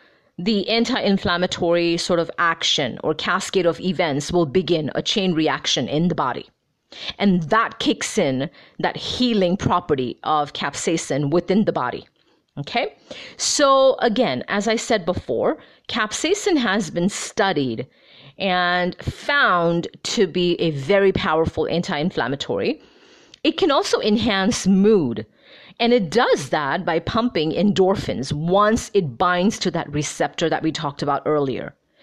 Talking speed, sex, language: 135 wpm, female, English